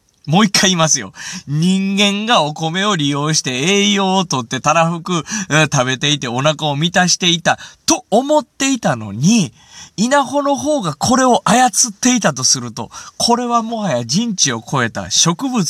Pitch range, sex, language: 130-215 Hz, male, Japanese